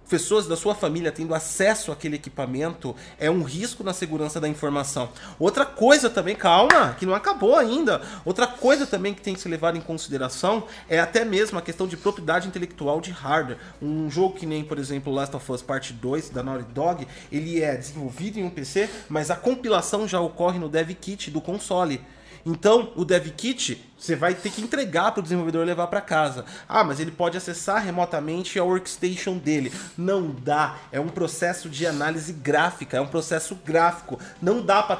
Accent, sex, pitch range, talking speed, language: Brazilian, male, 150-190 Hz, 190 wpm, Portuguese